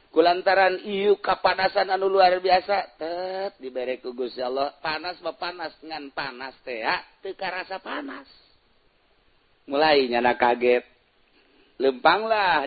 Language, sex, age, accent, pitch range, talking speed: Indonesian, male, 50-69, native, 130-170 Hz, 105 wpm